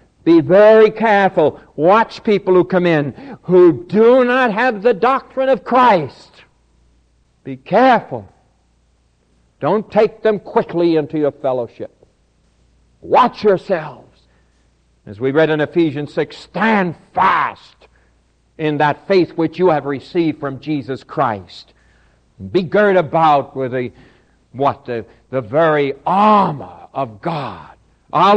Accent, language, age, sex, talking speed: American, English, 60-79, male, 125 wpm